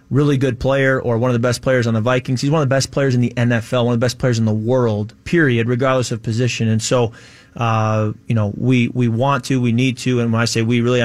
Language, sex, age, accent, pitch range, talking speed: English, male, 30-49, American, 115-130 Hz, 275 wpm